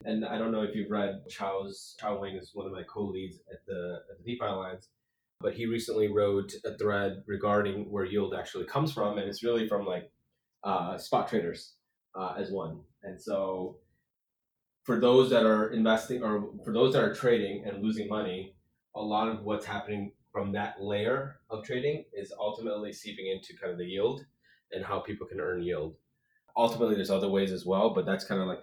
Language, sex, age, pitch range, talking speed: English, male, 20-39, 95-115 Hz, 195 wpm